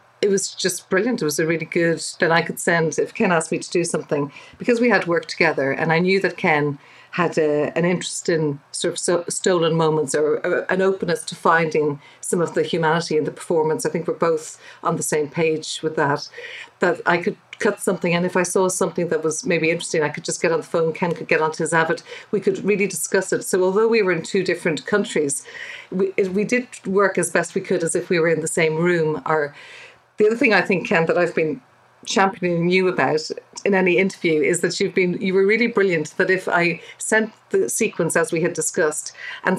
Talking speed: 235 wpm